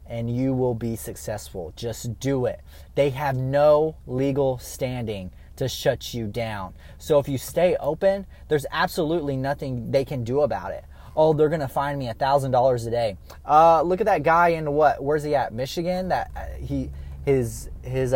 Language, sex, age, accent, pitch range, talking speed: English, male, 20-39, American, 120-180 Hz, 180 wpm